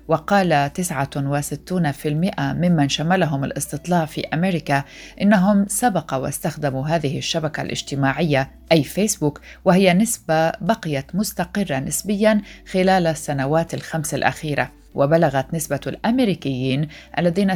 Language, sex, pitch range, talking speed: Arabic, female, 140-175 Hz, 95 wpm